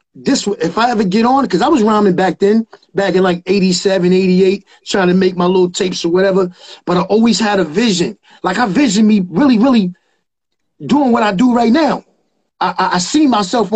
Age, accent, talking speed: 30-49, American, 210 wpm